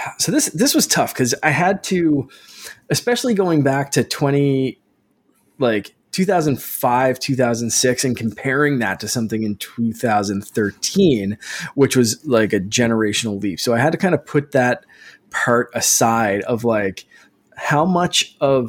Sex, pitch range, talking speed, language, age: male, 110-135 Hz, 145 wpm, English, 20-39